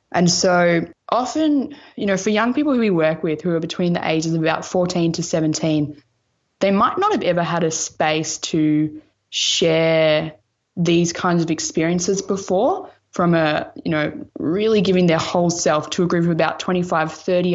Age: 20-39